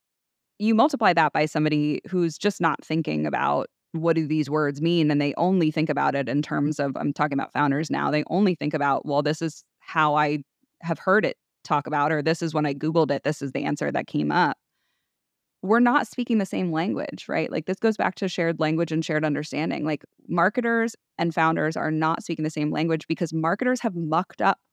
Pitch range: 150-195 Hz